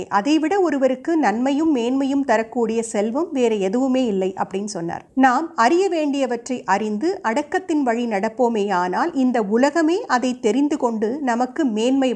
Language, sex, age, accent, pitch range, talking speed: Tamil, female, 50-69, native, 225-310 Hz, 85 wpm